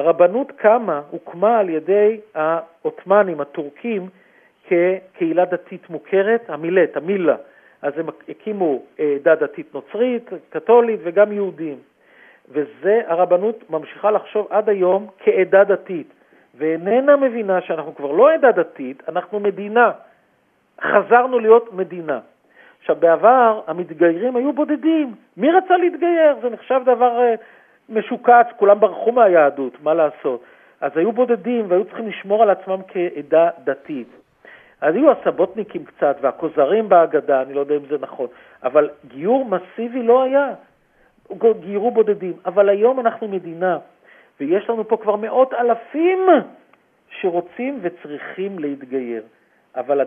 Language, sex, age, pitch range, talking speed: Hebrew, male, 50-69, 170-235 Hz, 120 wpm